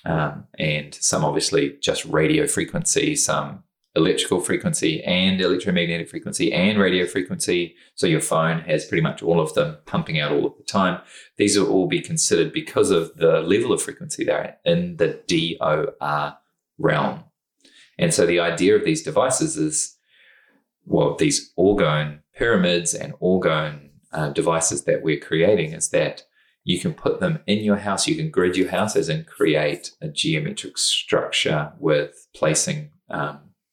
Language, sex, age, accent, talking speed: English, male, 20-39, Australian, 160 wpm